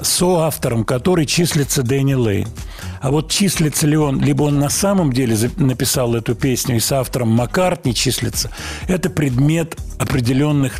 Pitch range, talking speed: 120-155 Hz, 155 wpm